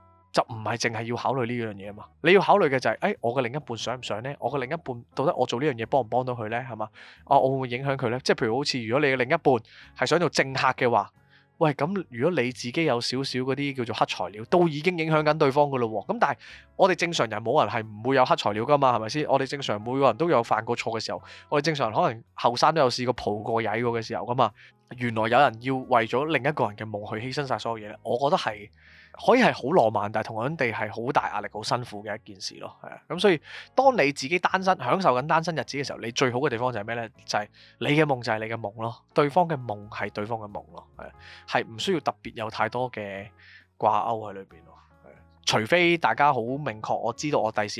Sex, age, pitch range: male, 20-39, 110-140 Hz